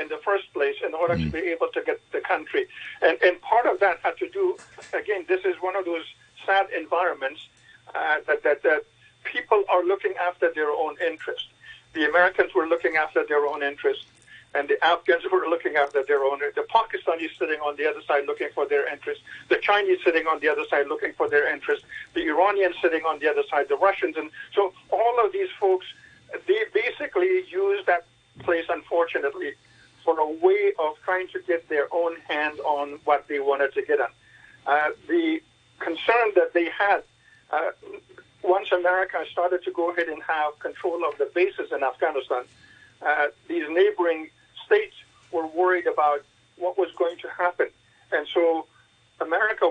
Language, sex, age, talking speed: English, male, 50-69, 180 wpm